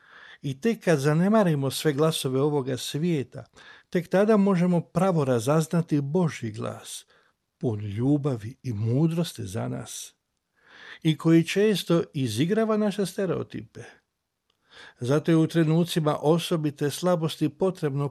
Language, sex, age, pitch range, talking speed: Croatian, male, 60-79, 130-170 Hz, 115 wpm